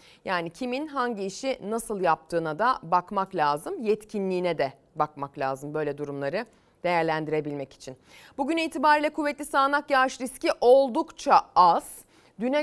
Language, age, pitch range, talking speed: Turkish, 40-59, 175-285 Hz, 125 wpm